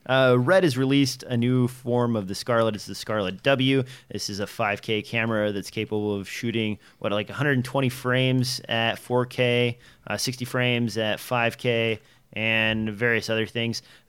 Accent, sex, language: American, male, English